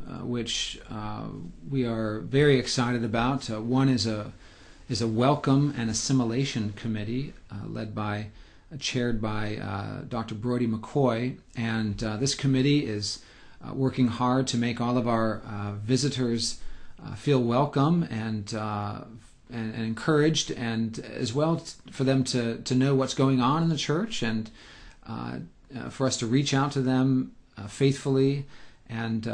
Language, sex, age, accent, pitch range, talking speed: English, male, 40-59, American, 110-130 Hz, 160 wpm